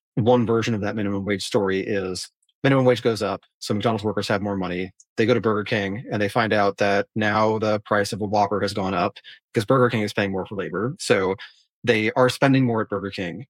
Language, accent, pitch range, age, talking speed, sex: English, American, 100-130 Hz, 30-49, 235 wpm, male